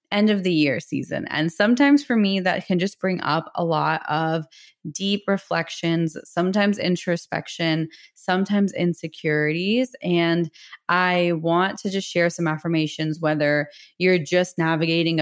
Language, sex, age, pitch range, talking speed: English, female, 20-39, 160-195 Hz, 140 wpm